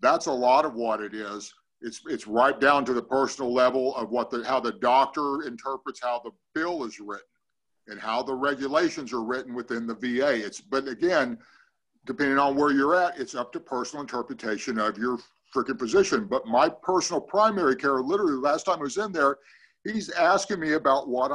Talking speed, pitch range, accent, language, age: 200 wpm, 125-160 Hz, American, English, 50-69